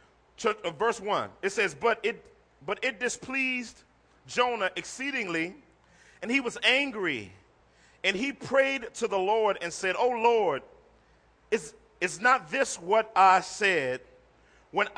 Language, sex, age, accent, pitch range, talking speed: English, male, 40-59, American, 175-235 Hz, 140 wpm